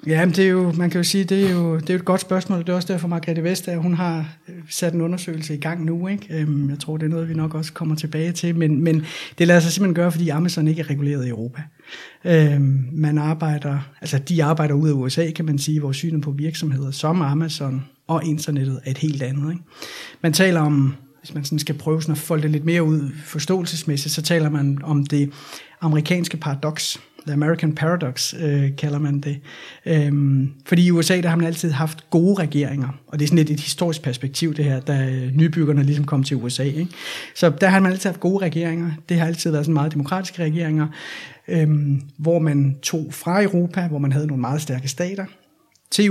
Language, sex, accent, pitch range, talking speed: Danish, male, native, 150-170 Hz, 215 wpm